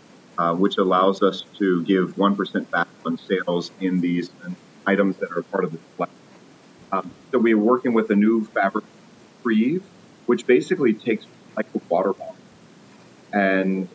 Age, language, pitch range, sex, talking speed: 40-59, English, 90-115 Hz, male, 160 wpm